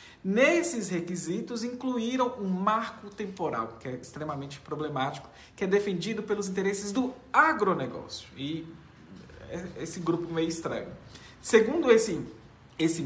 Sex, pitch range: male, 160-225 Hz